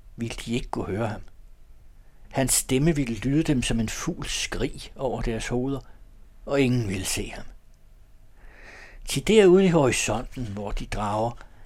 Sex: male